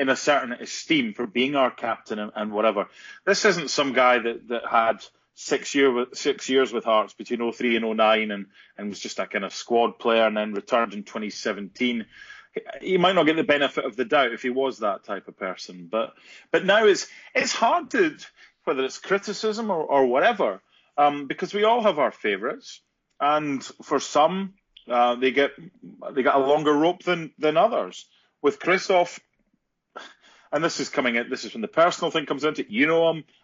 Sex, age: male, 30-49